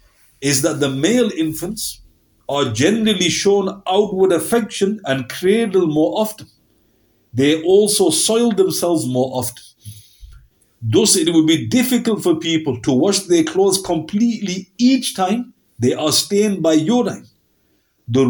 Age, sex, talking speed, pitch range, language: 50-69, male, 130 wpm, 125-185 Hz, English